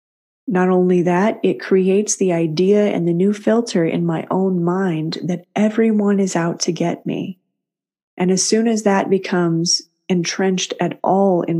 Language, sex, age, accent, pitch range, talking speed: English, female, 30-49, American, 170-195 Hz, 165 wpm